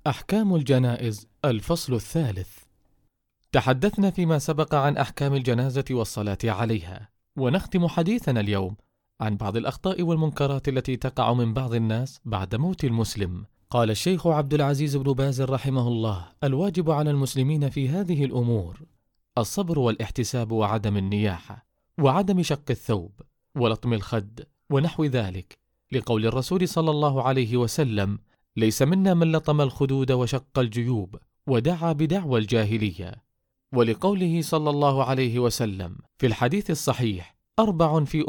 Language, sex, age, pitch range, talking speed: Arabic, male, 30-49, 115-145 Hz, 120 wpm